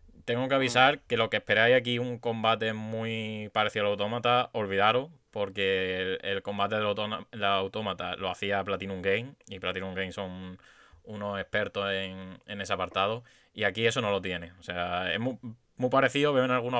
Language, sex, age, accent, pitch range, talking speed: Spanish, male, 20-39, Spanish, 100-120 Hz, 180 wpm